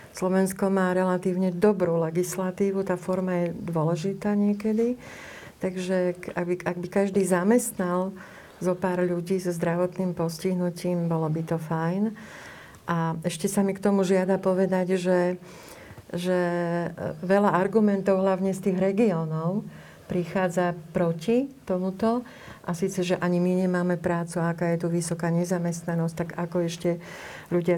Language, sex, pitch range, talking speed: Slovak, female, 170-185 Hz, 135 wpm